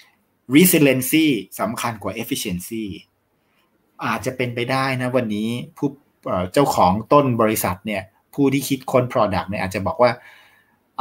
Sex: male